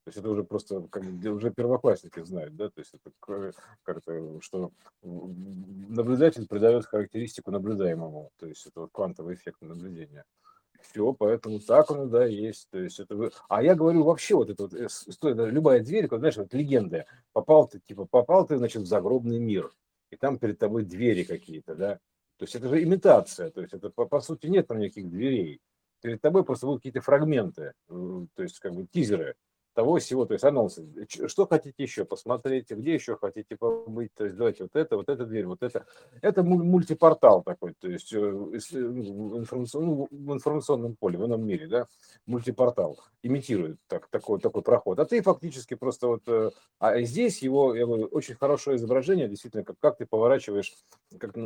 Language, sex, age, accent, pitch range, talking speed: Russian, male, 50-69, native, 105-150 Hz, 175 wpm